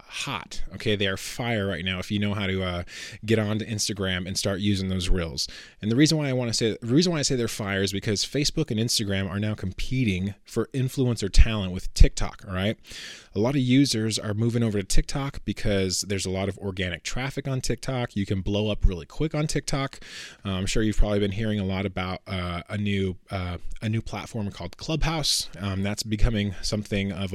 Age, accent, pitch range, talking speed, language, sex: 20-39, American, 95-115 Hz, 220 wpm, English, male